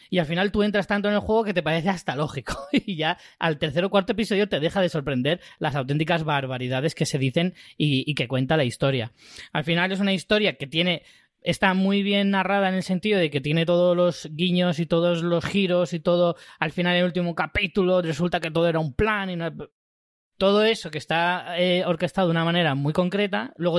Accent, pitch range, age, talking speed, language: Spanish, 140-185 Hz, 20-39, 225 wpm, Spanish